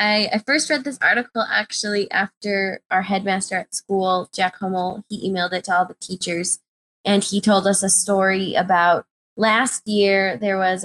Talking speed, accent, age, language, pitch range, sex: 170 wpm, American, 20-39, English, 185-210 Hz, female